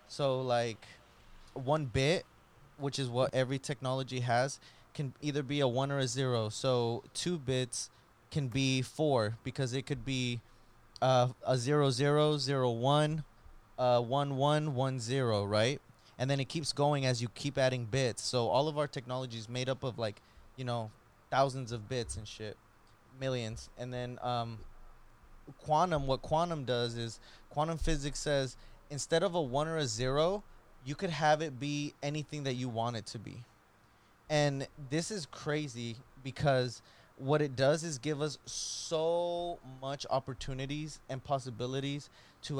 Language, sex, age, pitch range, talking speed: English, male, 20-39, 125-150 Hz, 160 wpm